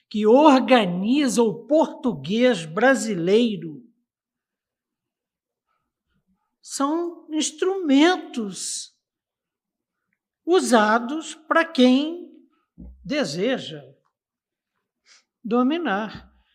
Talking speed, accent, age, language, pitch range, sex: 45 wpm, Brazilian, 60-79, Portuguese, 190-255 Hz, male